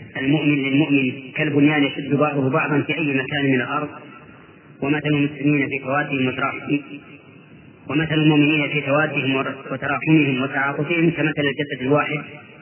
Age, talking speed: 30-49, 120 wpm